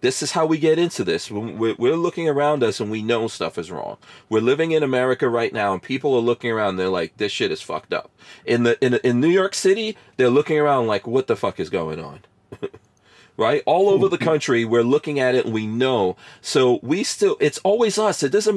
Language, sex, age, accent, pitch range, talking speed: English, male, 40-59, American, 105-155 Hz, 235 wpm